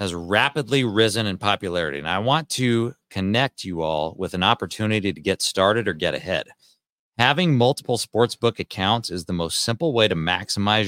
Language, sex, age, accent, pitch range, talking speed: English, male, 40-59, American, 95-120 Hz, 175 wpm